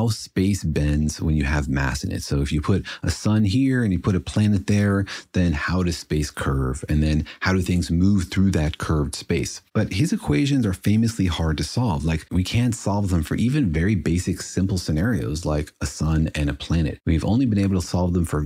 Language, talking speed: English, 225 wpm